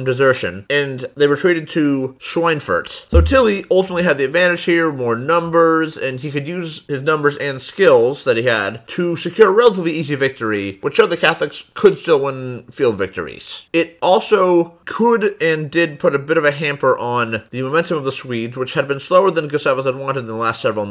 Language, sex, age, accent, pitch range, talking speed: English, male, 30-49, American, 125-175 Hz, 200 wpm